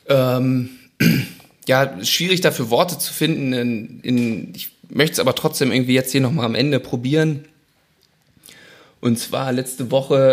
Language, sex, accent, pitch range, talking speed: German, male, German, 120-140 Hz, 145 wpm